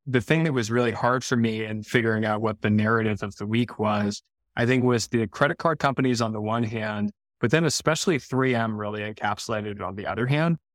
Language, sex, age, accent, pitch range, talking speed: English, male, 20-39, American, 110-130 Hz, 220 wpm